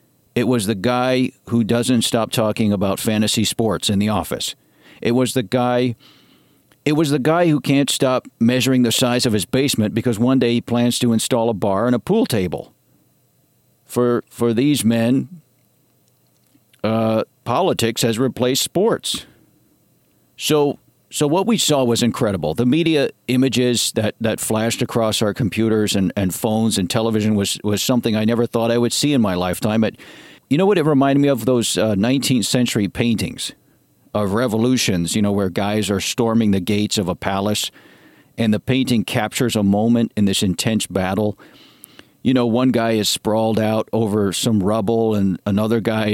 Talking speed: 175 wpm